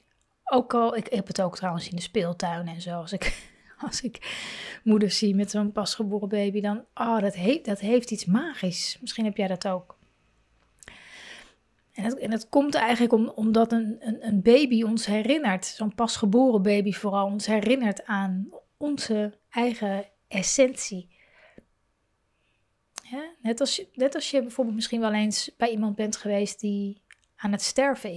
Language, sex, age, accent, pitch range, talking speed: Dutch, female, 30-49, Dutch, 200-245 Hz, 160 wpm